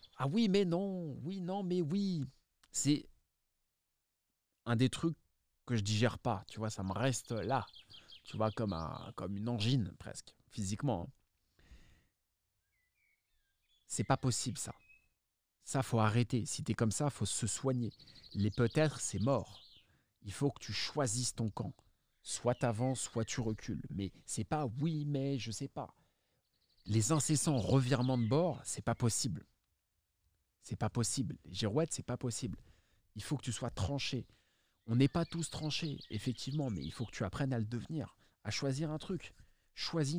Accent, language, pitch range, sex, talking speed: French, French, 105-145 Hz, male, 180 wpm